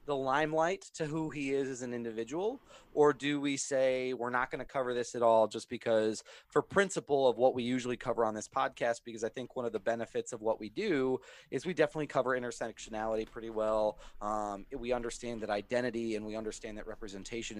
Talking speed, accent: 210 wpm, American